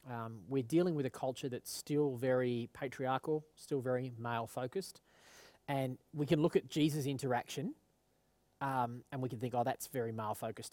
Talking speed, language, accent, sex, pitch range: 160 wpm, English, Australian, male, 115-140 Hz